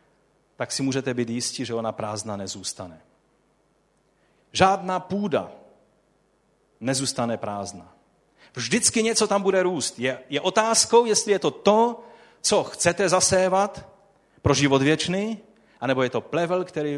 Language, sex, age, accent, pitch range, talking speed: Czech, male, 40-59, native, 125-175 Hz, 125 wpm